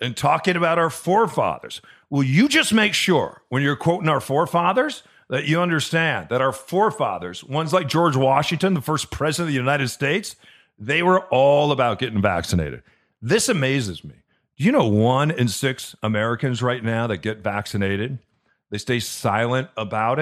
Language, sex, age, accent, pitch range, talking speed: English, male, 40-59, American, 115-160 Hz, 170 wpm